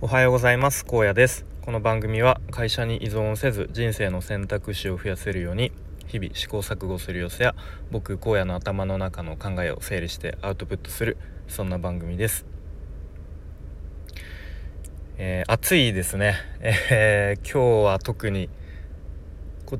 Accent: native